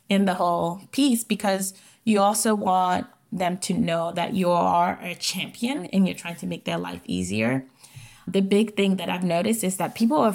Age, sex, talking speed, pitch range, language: 20-39, female, 195 wpm, 175-205 Hz, English